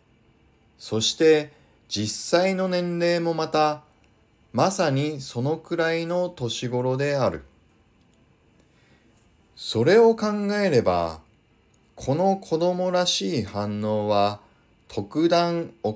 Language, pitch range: Japanese, 110-175 Hz